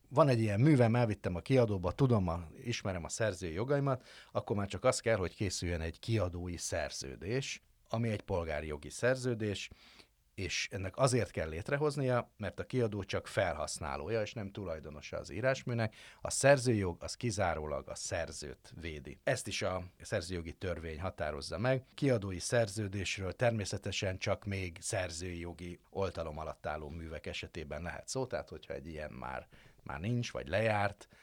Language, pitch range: Hungarian, 80-110 Hz